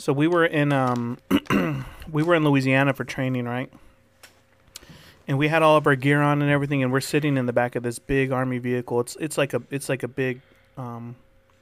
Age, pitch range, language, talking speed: 30-49, 120-145 Hz, English, 215 wpm